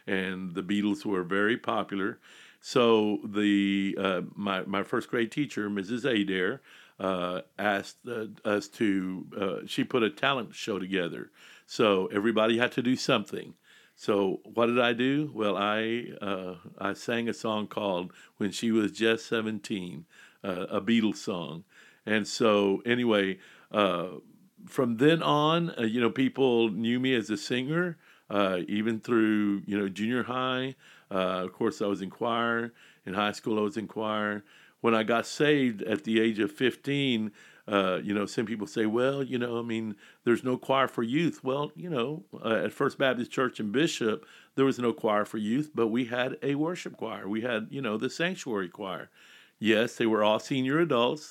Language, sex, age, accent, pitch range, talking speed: English, male, 60-79, American, 105-130 Hz, 180 wpm